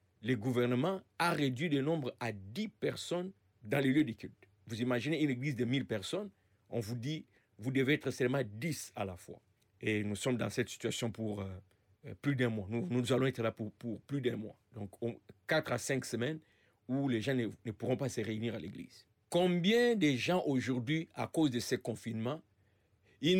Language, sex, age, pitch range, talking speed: French, male, 50-69, 110-175 Hz, 205 wpm